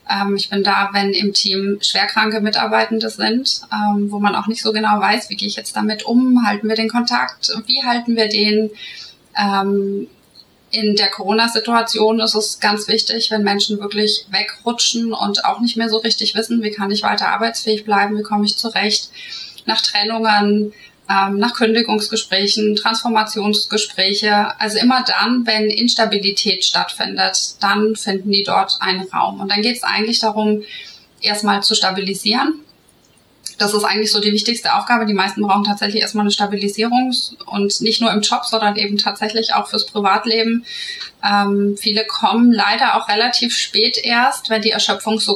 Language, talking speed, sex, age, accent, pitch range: German, 160 wpm, female, 20-39, German, 205-225 Hz